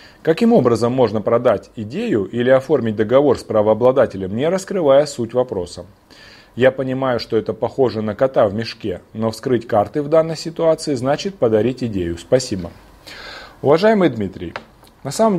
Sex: male